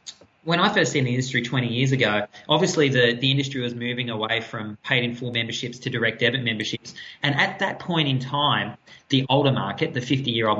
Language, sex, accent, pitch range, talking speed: English, male, Australian, 120-150 Hz, 185 wpm